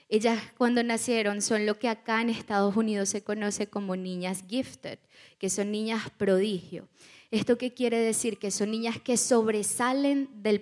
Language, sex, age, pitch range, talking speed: Spanish, female, 10-29, 205-250 Hz, 165 wpm